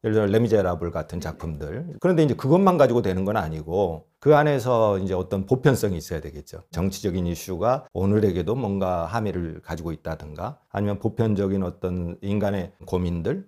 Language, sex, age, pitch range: Korean, male, 40-59, 95-135 Hz